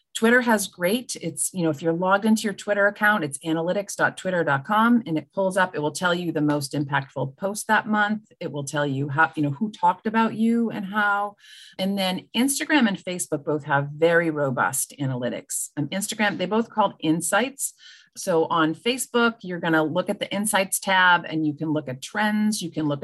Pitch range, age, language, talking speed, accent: 150-205 Hz, 40-59, English, 200 wpm, American